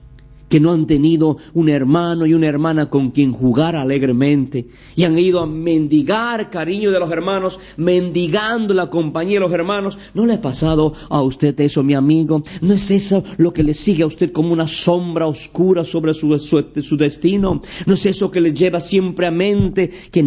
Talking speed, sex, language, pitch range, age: 190 wpm, male, Spanish, 150-185 Hz, 50-69